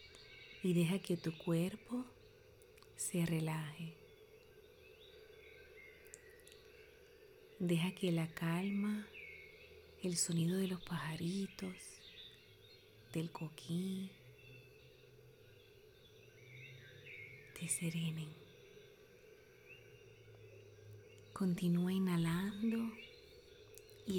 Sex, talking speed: female, 55 wpm